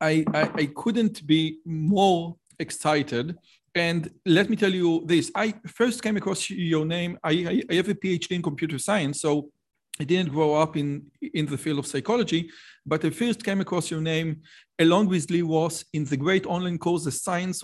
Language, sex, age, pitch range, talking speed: Hebrew, male, 40-59, 145-175 Hz, 185 wpm